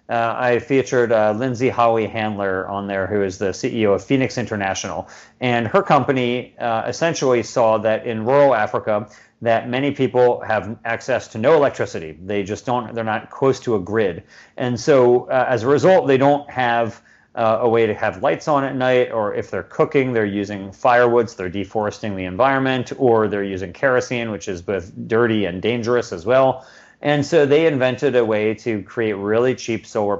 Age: 40-59